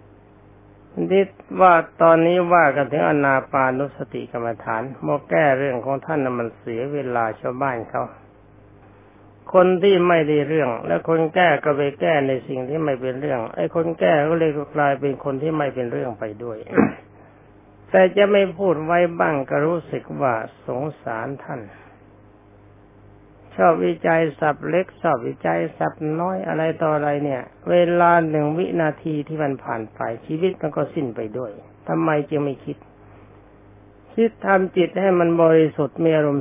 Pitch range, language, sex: 105-160 Hz, Thai, male